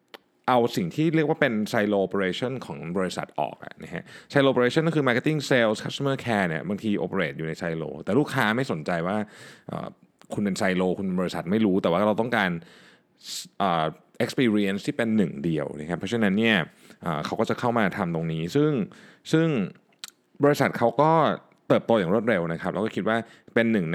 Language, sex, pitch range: Thai, male, 95-130 Hz